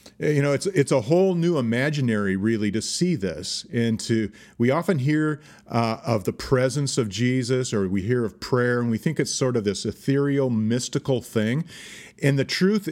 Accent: American